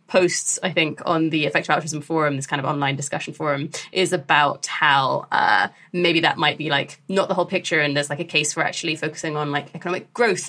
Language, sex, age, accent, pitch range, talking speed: English, female, 20-39, British, 155-195 Hz, 225 wpm